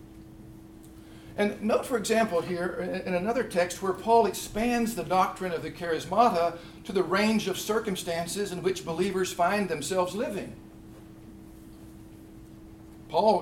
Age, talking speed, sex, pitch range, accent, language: 60-79, 125 wpm, male, 165-220 Hz, American, English